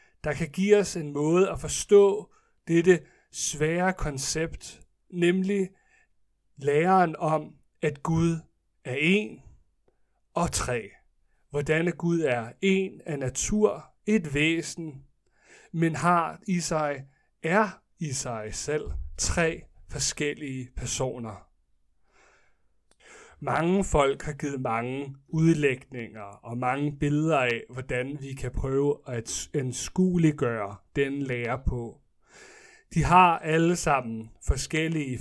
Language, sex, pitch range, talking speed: Danish, male, 130-175 Hz, 105 wpm